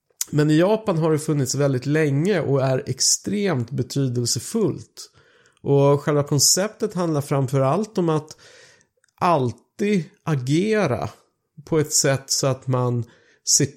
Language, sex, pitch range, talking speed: Swedish, male, 125-170 Hz, 120 wpm